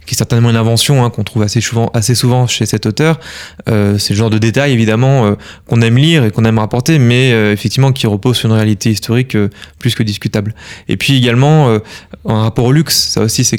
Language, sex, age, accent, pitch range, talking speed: French, male, 20-39, French, 110-125 Hz, 240 wpm